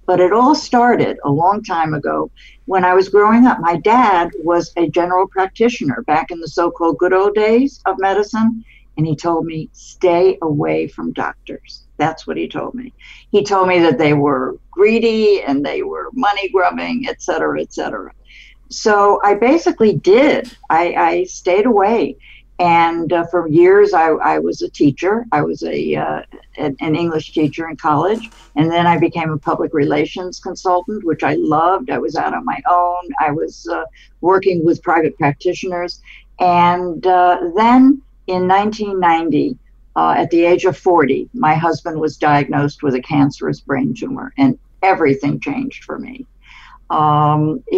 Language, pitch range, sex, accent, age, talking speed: English, 165-230 Hz, female, American, 60-79, 165 wpm